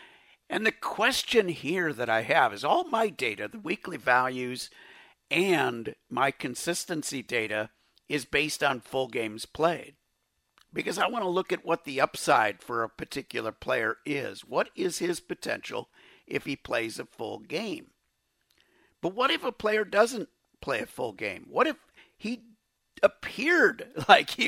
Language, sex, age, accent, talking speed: English, male, 50-69, American, 155 wpm